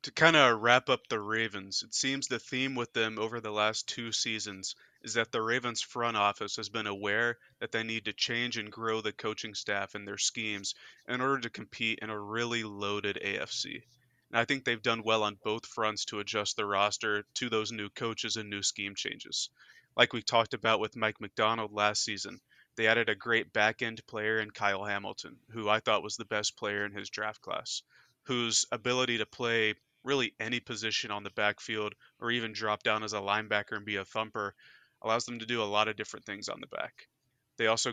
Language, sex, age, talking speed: English, male, 30-49, 210 wpm